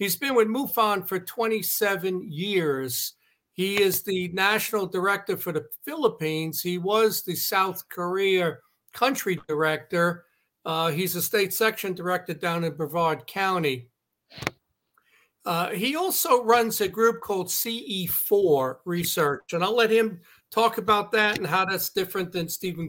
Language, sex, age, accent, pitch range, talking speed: English, male, 50-69, American, 165-215 Hz, 140 wpm